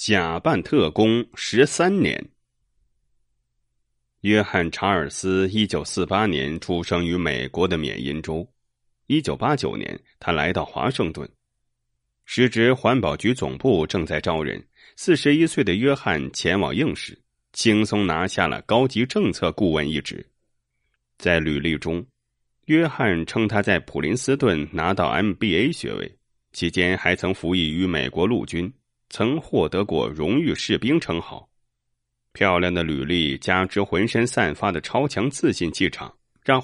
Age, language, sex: 30-49, Japanese, male